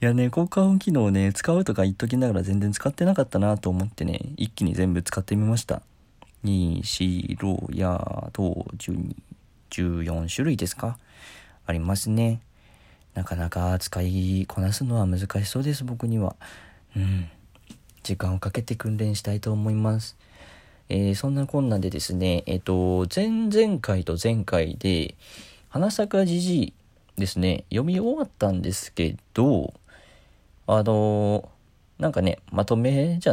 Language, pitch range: Japanese, 90-115 Hz